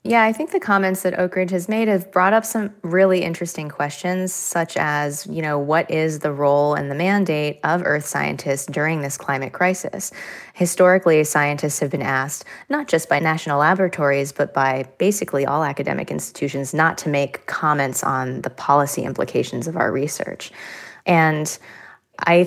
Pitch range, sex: 150-185 Hz, female